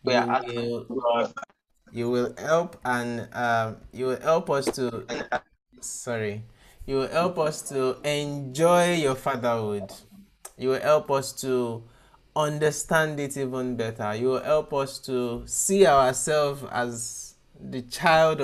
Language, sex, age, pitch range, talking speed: English, male, 20-39, 115-135 Hz, 135 wpm